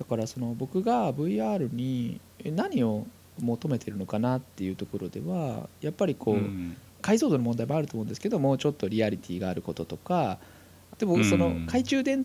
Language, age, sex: Japanese, 20-39, male